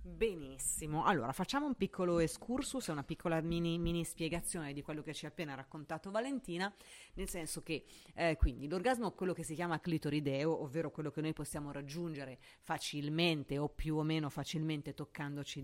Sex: female